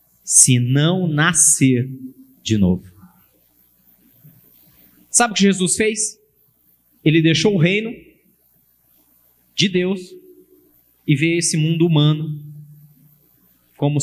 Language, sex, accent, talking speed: Portuguese, male, Brazilian, 95 wpm